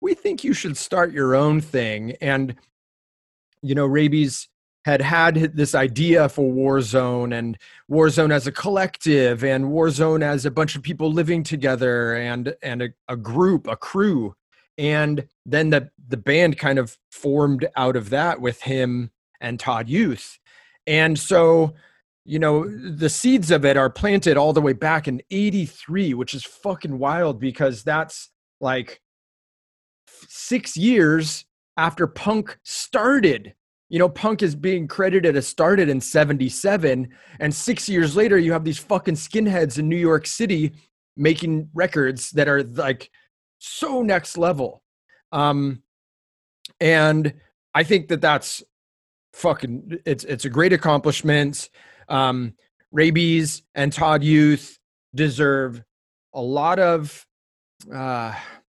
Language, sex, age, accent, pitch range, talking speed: English, male, 30-49, American, 135-170 Hz, 140 wpm